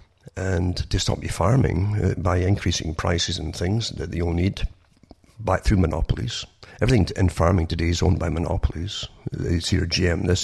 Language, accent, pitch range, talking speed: English, British, 85-100 Hz, 185 wpm